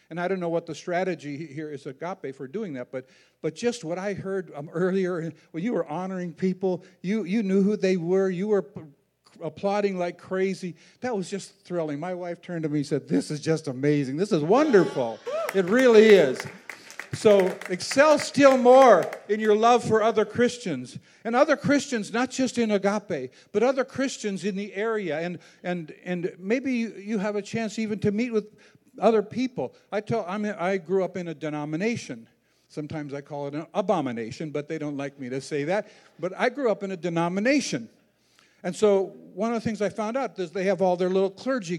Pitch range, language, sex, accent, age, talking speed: 170-230 Hz, English, male, American, 50-69, 205 wpm